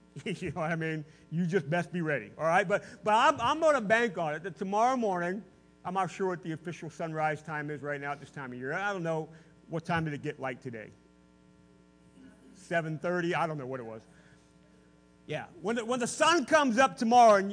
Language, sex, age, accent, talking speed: English, male, 40-59, American, 230 wpm